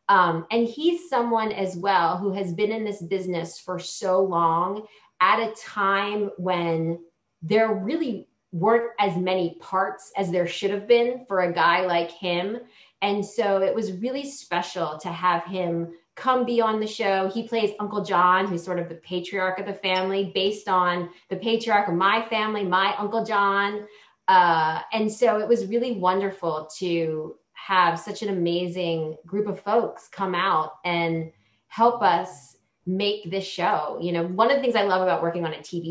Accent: American